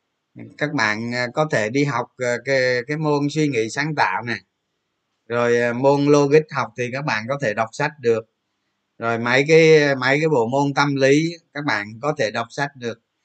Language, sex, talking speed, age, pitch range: Vietnamese, male, 190 wpm, 20-39, 120-155 Hz